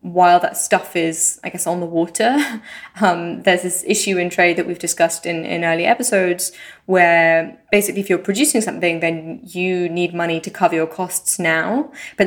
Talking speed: 185 wpm